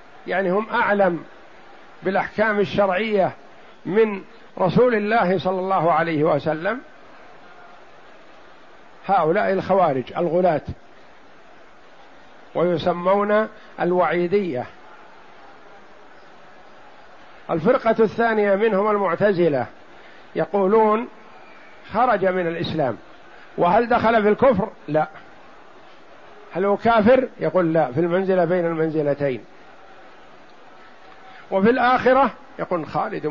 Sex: male